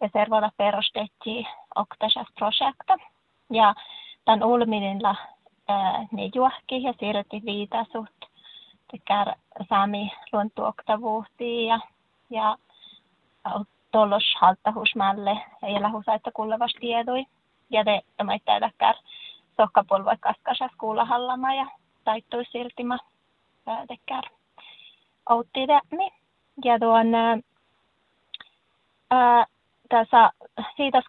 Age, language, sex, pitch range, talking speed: 20-39, Finnish, female, 210-245 Hz, 70 wpm